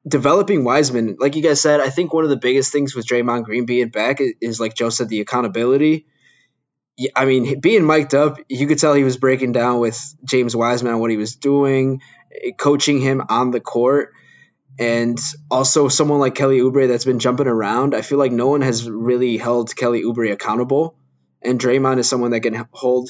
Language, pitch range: English, 120-145 Hz